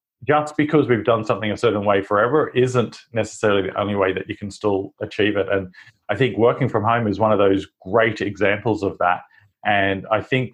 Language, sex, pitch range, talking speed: English, male, 105-125 Hz, 210 wpm